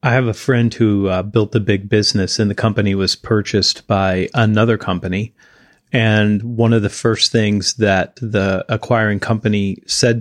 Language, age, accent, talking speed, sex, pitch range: English, 30-49, American, 170 wpm, male, 105-120 Hz